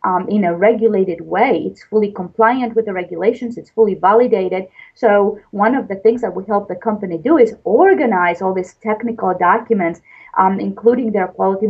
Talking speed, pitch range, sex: 180 wpm, 195-235 Hz, female